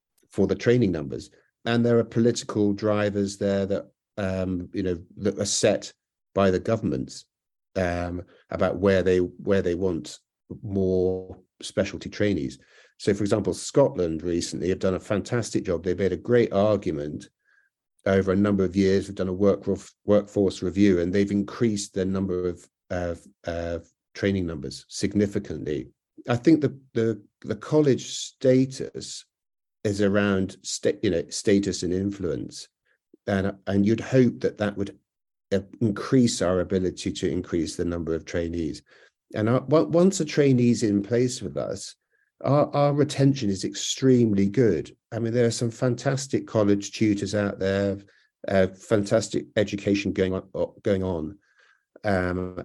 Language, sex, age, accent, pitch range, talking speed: English, male, 50-69, British, 95-115 Hz, 150 wpm